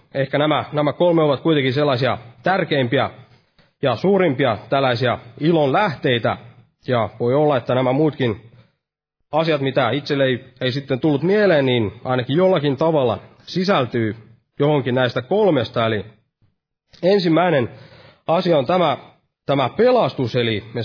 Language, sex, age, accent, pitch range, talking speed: Finnish, male, 30-49, native, 120-150 Hz, 125 wpm